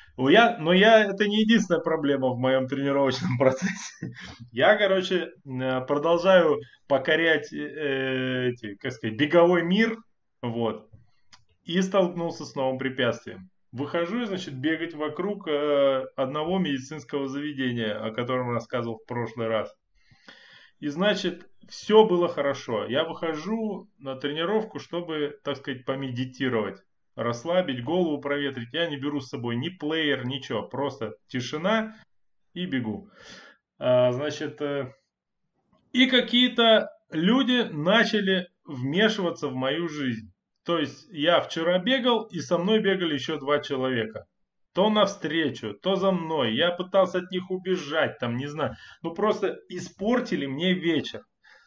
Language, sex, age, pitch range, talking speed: Russian, male, 20-39, 130-185 Hz, 120 wpm